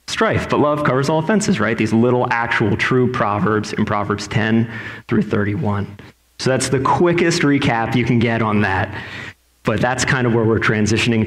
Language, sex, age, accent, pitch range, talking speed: English, male, 30-49, American, 100-115 Hz, 180 wpm